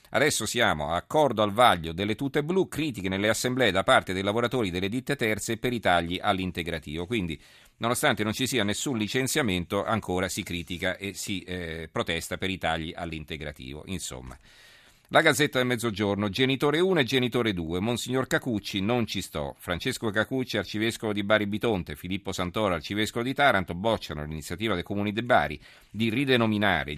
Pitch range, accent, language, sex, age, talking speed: 85-115 Hz, native, Italian, male, 40-59, 165 wpm